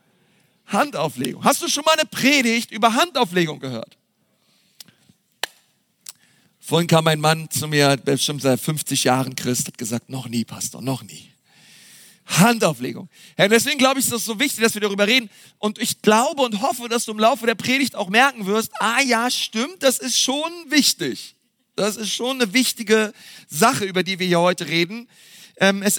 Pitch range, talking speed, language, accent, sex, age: 190-240 Hz, 170 wpm, German, German, male, 40-59